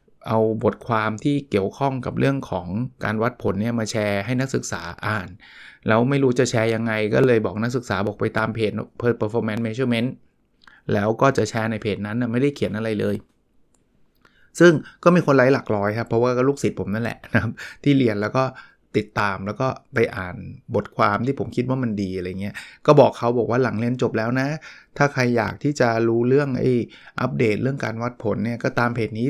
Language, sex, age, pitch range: English, male, 20-39, 110-135 Hz